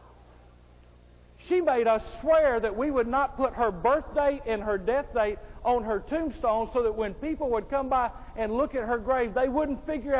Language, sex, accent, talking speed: English, male, American, 200 wpm